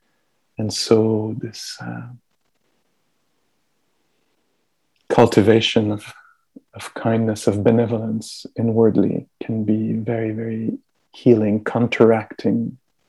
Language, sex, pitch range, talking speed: English, male, 110-115 Hz, 80 wpm